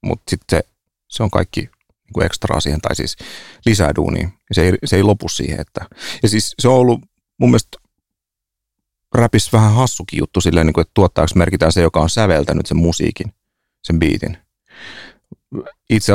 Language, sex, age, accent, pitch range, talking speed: Finnish, male, 30-49, native, 85-105 Hz, 155 wpm